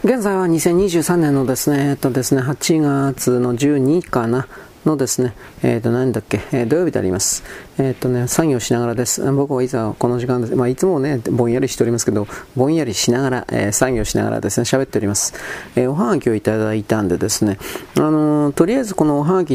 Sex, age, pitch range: male, 40-59, 115-150 Hz